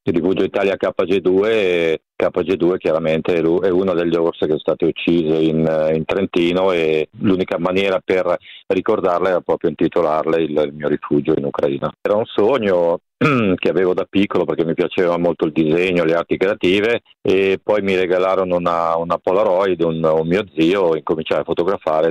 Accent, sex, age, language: native, male, 40-59, Italian